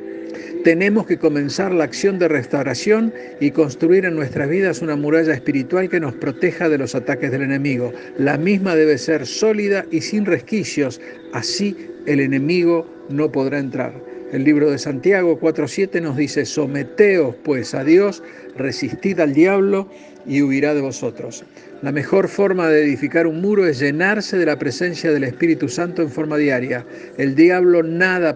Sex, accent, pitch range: male, Argentinian, 145-175 Hz